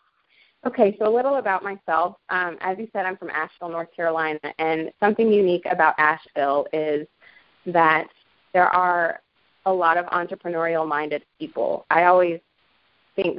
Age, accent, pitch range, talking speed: 20-39, American, 160-195 Hz, 145 wpm